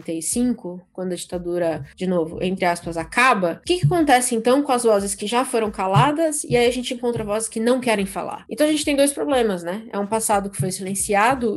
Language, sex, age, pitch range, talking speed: Portuguese, female, 20-39, 185-250 Hz, 230 wpm